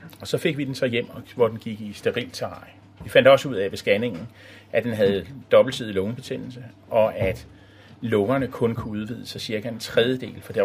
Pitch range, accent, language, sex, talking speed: 100-140 Hz, native, Danish, male, 195 wpm